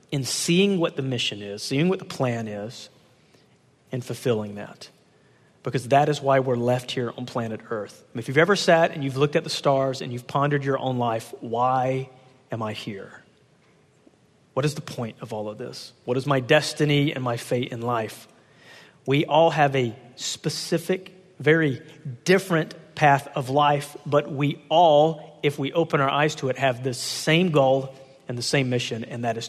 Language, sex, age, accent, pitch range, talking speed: English, male, 40-59, American, 125-150 Hz, 190 wpm